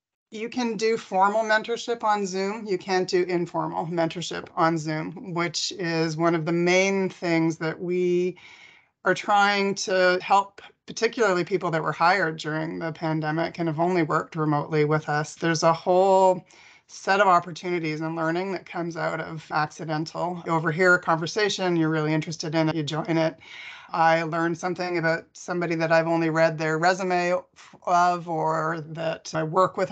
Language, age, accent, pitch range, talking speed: English, 30-49, American, 165-195 Hz, 170 wpm